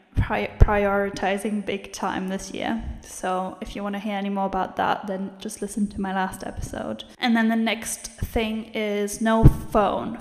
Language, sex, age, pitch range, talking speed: English, female, 10-29, 200-220 Hz, 175 wpm